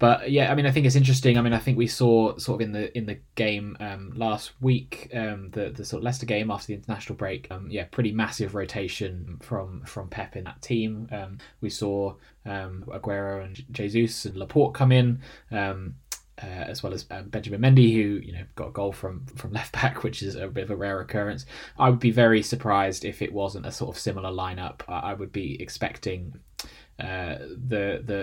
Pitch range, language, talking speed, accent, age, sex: 100-120 Hz, English, 220 wpm, British, 20-39, male